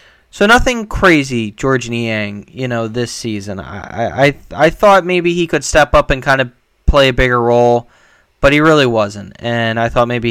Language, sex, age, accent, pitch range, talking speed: English, male, 20-39, American, 105-130 Hz, 190 wpm